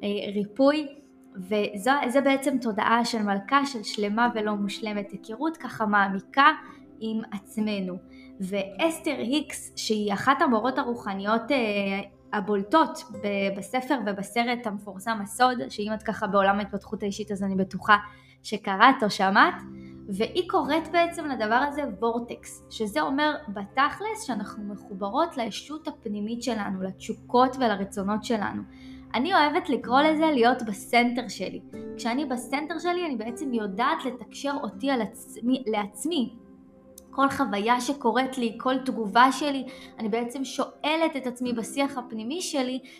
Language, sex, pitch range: Hebrew, female, 210-270 Hz